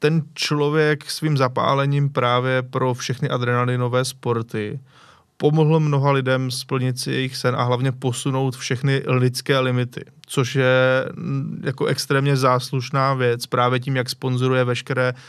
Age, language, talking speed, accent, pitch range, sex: 20-39, Czech, 130 wpm, native, 125-140 Hz, male